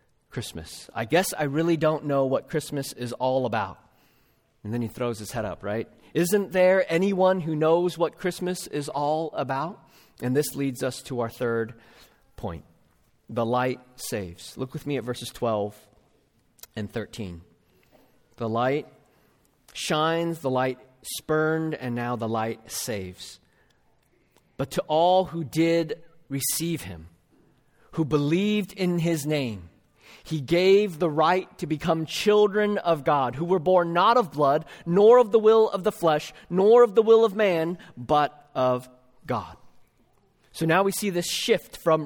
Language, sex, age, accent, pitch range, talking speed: English, male, 40-59, American, 125-185 Hz, 155 wpm